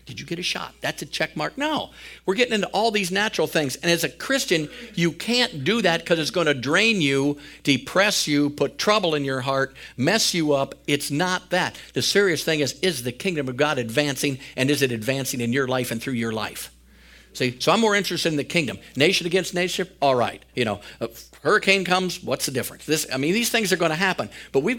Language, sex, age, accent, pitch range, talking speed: English, male, 50-69, American, 130-170 Hz, 230 wpm